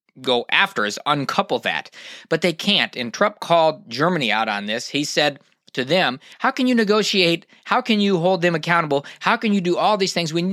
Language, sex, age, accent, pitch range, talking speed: English, male, 20-39, American, 135-185 Hz, 210 wpm